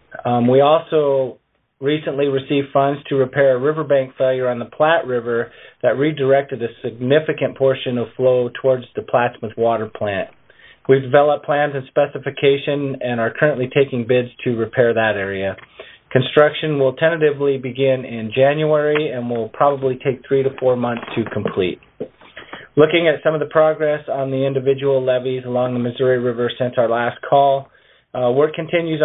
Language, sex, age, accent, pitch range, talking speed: English, male, 40-59, American, 125-145 Hz, 160 wpm